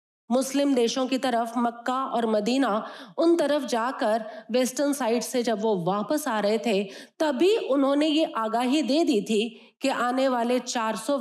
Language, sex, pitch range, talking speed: Hindi, female, 225-290 Hz, 160 wpm